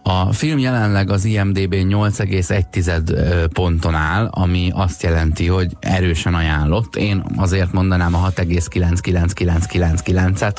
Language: Hungarian